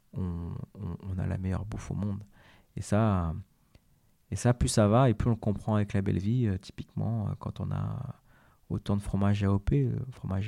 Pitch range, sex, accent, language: 95-120 Hz, male, French, French